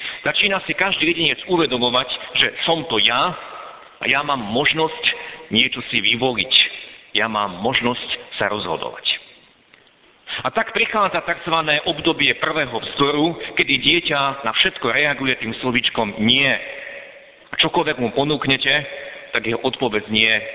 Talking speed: 130 wpm